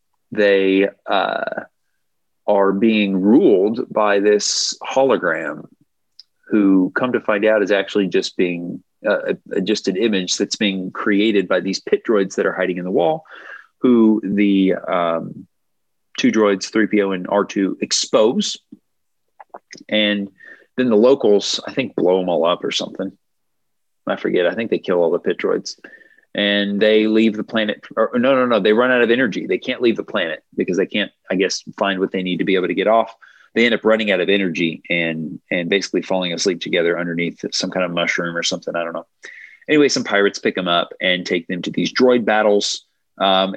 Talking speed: 185 wpm